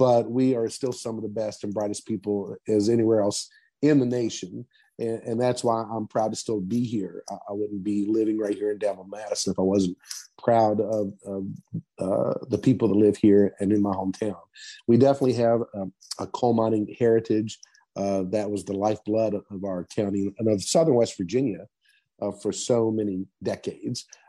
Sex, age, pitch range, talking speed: male, 50-69, 100-115 Hz, 200 wpm